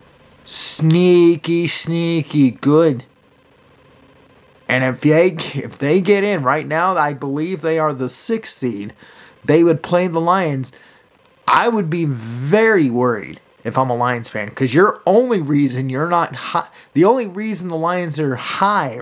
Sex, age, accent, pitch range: male, 30-49, American, 130-165 Hz